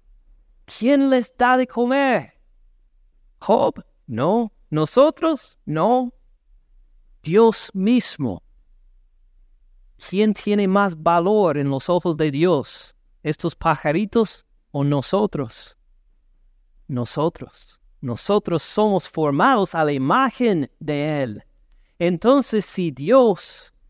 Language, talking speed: Spanish, 90 wpm